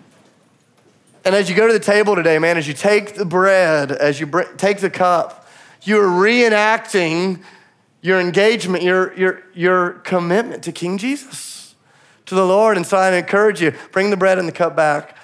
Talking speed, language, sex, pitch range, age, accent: 175 wpm, English, male, 125-180 Hz, 30-49, American